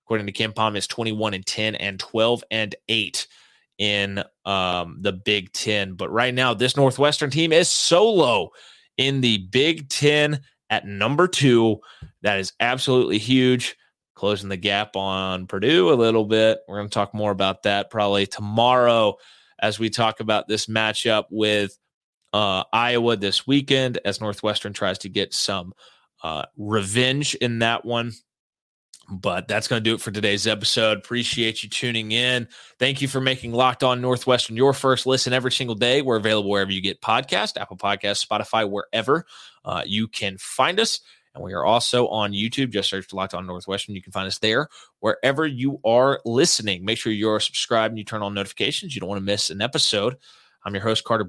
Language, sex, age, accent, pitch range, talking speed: English, male, 30-49, American, 100-125 Hz, 180 wpm